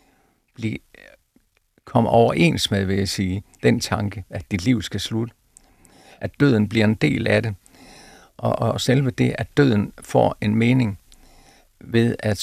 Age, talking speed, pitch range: 50-69, 150 wpm, 100-120 Hz